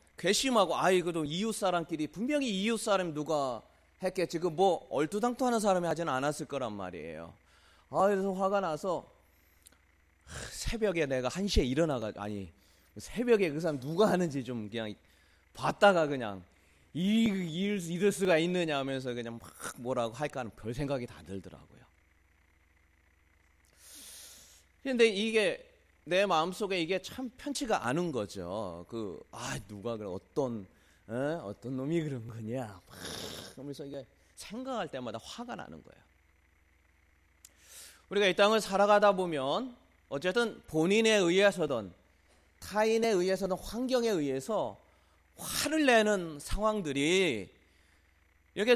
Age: 30-49